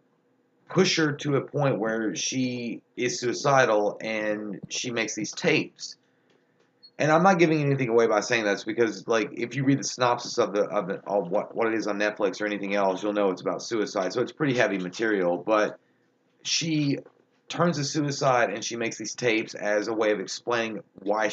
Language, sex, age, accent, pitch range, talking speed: English, male, 30-49, American, 105-130 Hz, 200 wpm